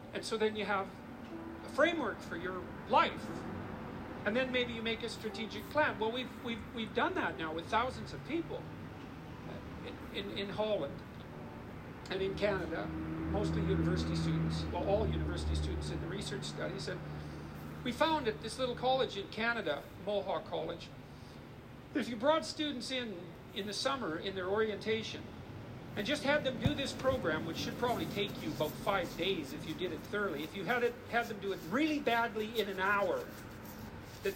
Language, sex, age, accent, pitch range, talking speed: English, male, 50-69, American, 185-245 Hz, 180 wpm